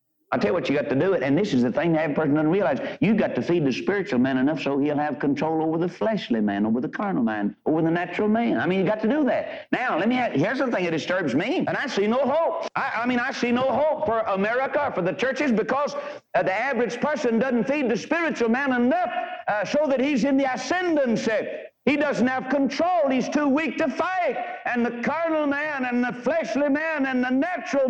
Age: 60-79